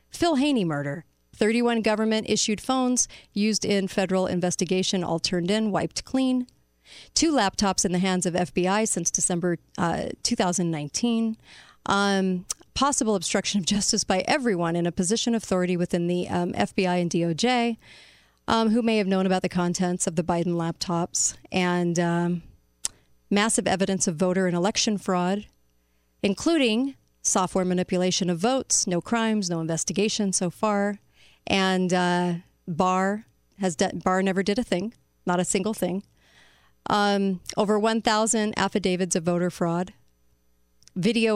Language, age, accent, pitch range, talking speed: English, 40-59, American, 175-215 Hz, 140 wpm